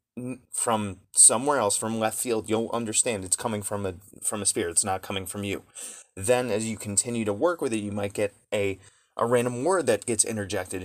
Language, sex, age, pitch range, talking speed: English, male, 30-49, 100-120 Hz, 210 wpm